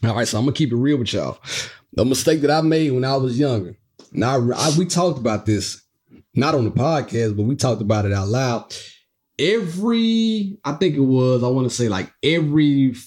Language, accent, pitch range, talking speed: English, American, 125-185 Hz, 225 wpm